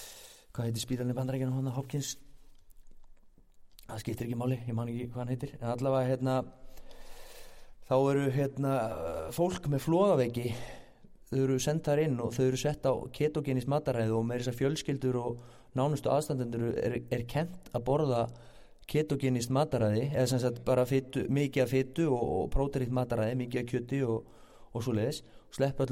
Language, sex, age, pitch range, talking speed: English, male, 30-49, 120-145 Hz, 155 wpm